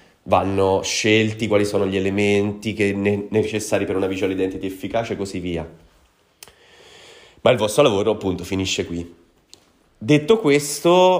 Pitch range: 95-110 Hz